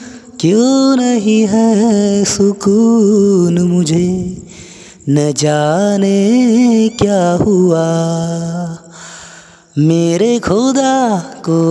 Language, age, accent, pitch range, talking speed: Hindi, 20-39, native, 170-230 Hz, 60 wpm